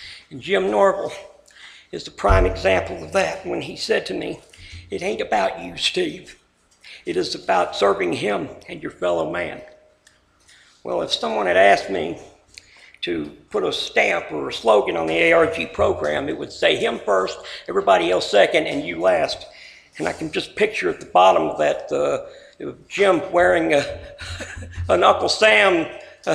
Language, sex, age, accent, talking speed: English, male, 60-79, American, 165 wpm